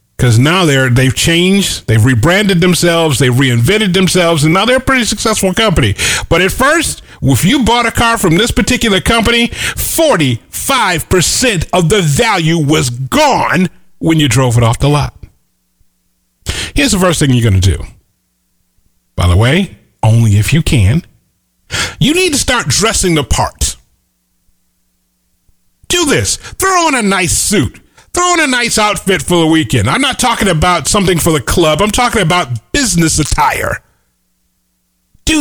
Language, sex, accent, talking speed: English, male, American, 160 wpm